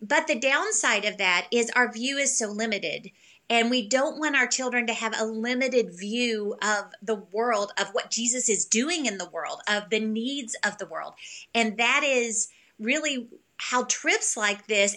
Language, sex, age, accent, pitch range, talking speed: English, female, 30-49, American, 215-255 Hz, 190 wpm